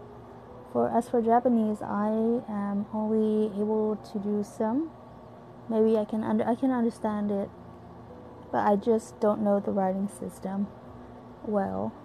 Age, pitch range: 20-39, 190-225 Hz